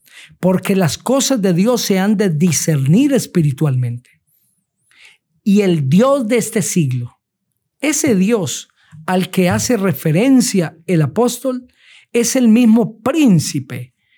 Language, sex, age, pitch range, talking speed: Spanish, male, 50-69, 155-215 Hz, 120 wpm